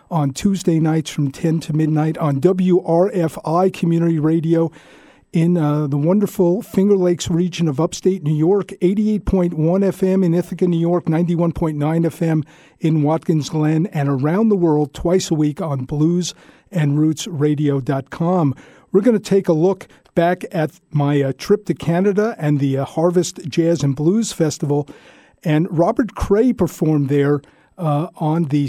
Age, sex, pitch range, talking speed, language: 50-69, male, 150-180 Hz, 150 wpm, English